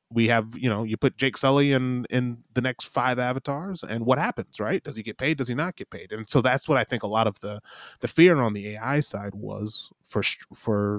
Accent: American